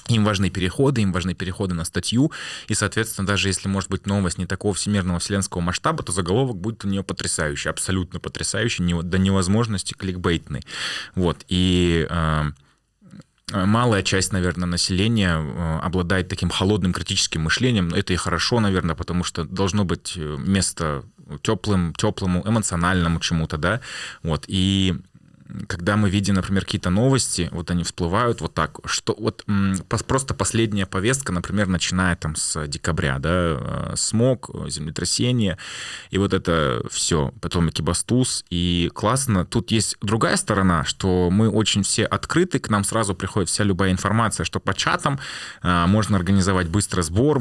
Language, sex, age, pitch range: Russian, male, 20-39, 90-105 Hz